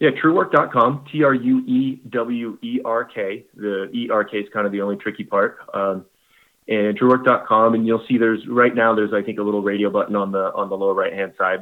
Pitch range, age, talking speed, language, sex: 100-115 Hz, 30-49, 180 wpm, English, male